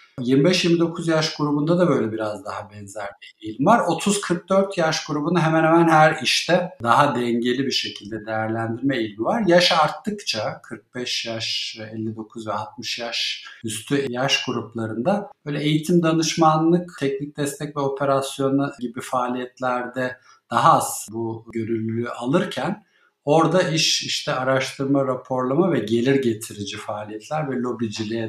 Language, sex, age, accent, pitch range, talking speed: Turkish, male, 50-69, native, 110-145 Hz, 130 wpm